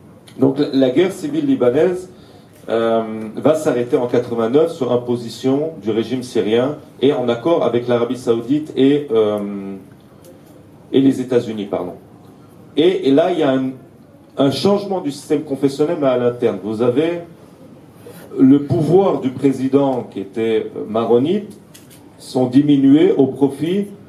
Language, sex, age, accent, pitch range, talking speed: French, male, 40-59, French, 115-145 Hz, 135 wpm